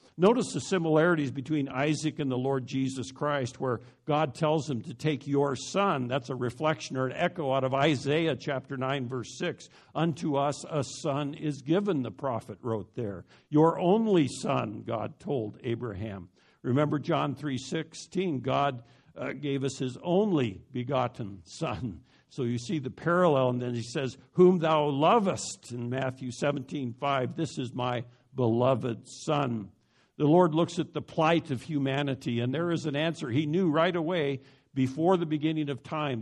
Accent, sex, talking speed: American, male, 165 wpm